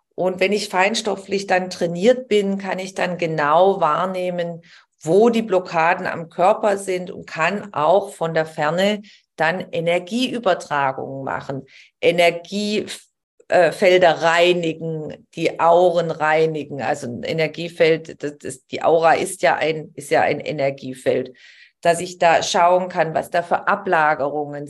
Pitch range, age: 160-205 Hz, 40-59